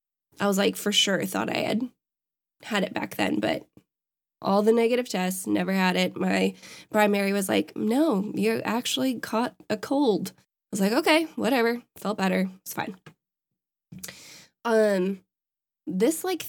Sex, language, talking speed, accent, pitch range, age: female, English, 155 wpm, American, 185-225 Hz, 10-29